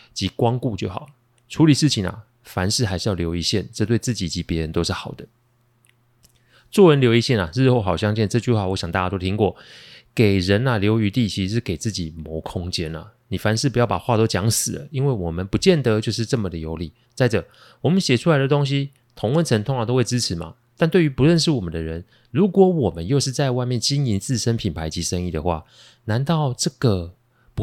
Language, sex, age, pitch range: Chinese, male, 30-49, 95-125 Hz